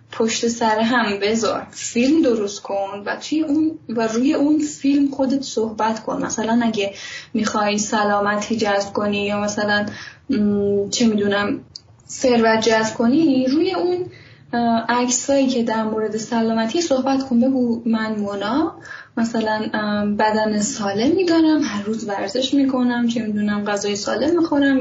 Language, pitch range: Persian, 220-270 Hz